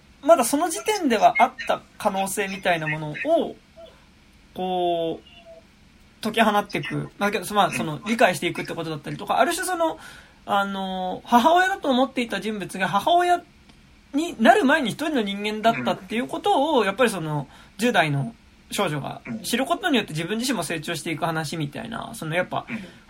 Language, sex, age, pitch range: Japanese, male, 20-39, 165-255 Hz